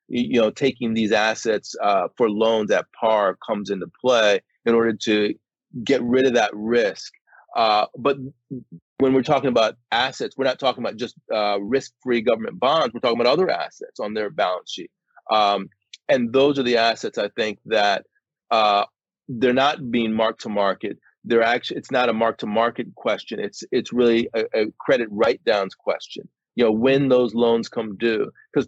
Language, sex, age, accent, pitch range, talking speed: English, male, 30-49, American, 110-130 Hz, 180 wpm